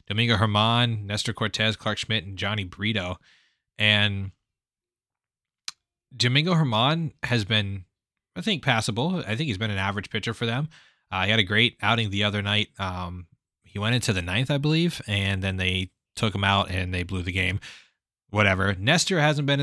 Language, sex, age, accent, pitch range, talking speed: English, male, 20-39, American, 100-120 Hz, 175 wpm